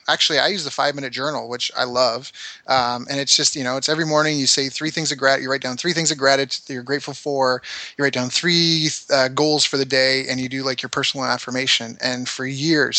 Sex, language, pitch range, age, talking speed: male, English, 125-145 Hz, 20-39, 255 wpm